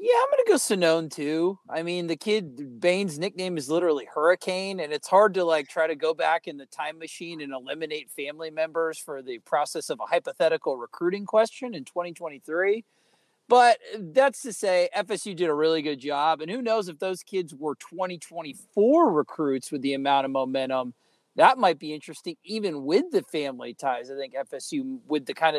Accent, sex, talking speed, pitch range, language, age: American, male, 195 wpm, 150-200 Hz, English, 40-59